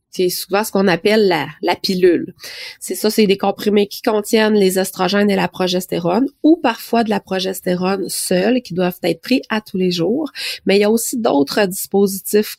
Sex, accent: female, Canadian